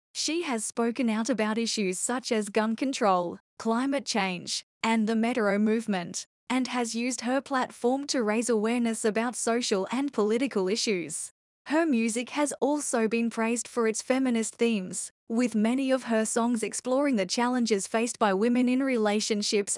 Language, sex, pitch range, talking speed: English, female, 220-255 Hz, 160 wpm